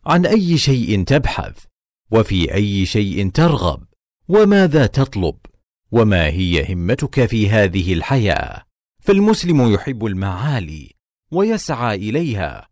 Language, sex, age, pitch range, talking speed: Arabic, male, 40-59, 95-135 Hz, 100 wpm